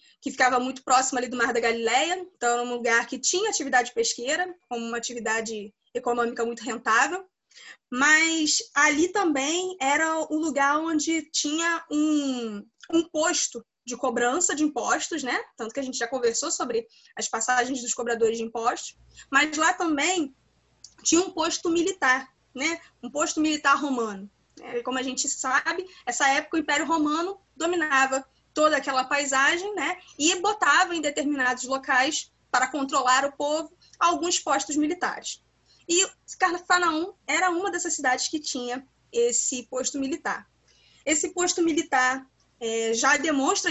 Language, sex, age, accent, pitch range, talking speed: Portuguese, female, 20-39, Brazilian, 255-330 Hz, 150 wpm